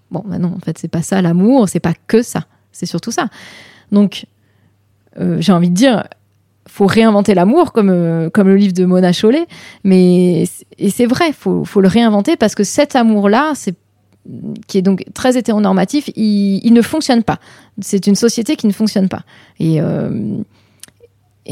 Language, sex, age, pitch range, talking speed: French, female, 30-49, 175-220 Hz, 185 wpm